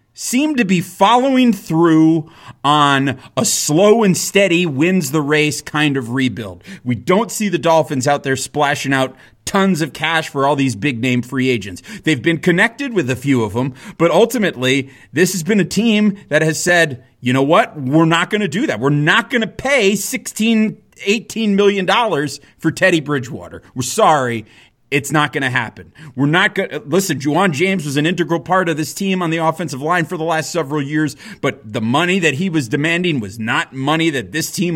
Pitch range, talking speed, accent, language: 130-180 Hz, 200 wpm, American, English